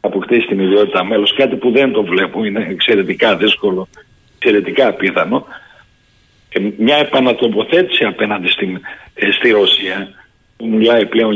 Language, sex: Greek, male